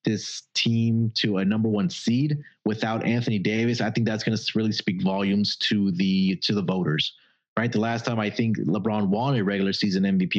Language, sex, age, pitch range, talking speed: English, male, 30-49, 100-130 Hz, 200 wpm